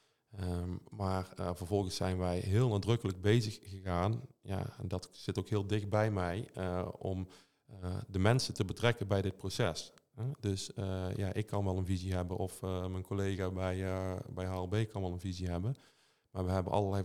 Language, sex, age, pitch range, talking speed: Dutch, male, 40-59, 95-105 Hz, 195 wpm